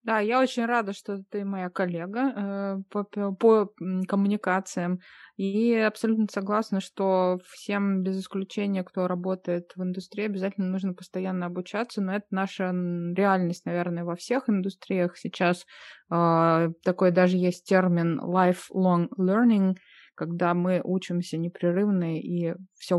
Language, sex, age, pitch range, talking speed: Russian, female, 20-39, 175-200 Hz, 130 wpm